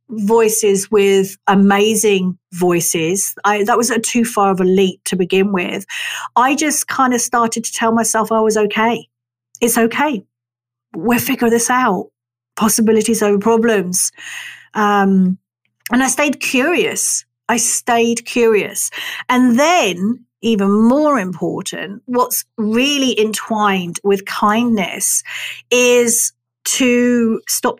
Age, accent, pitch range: 40-59, British, 195-255 Hz